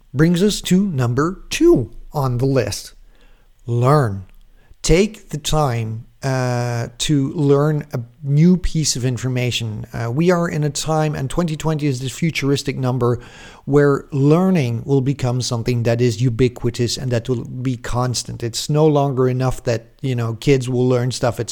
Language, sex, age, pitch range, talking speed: English, male, 50-69, 120-155 Hz, 160 wpm